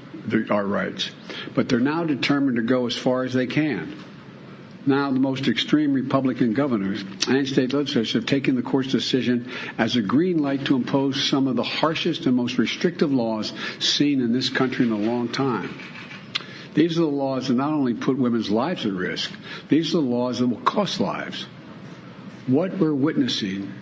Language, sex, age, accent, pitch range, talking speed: English, male, 60-79, American, 120-160 Hz, 180 wpm